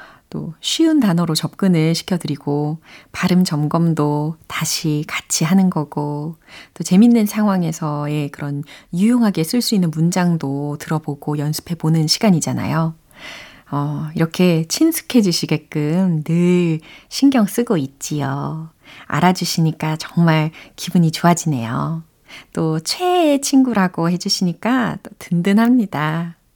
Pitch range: 160-235 Hz